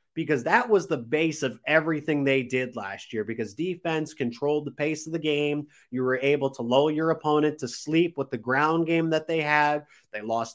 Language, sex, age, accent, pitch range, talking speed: English, male, 30-49, American, 135-180 Hz, 210 wpm